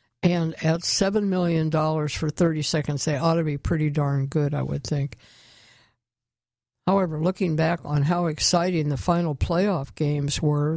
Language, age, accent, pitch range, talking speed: English, 60-79, American, 150-170 Hz, 155 wpm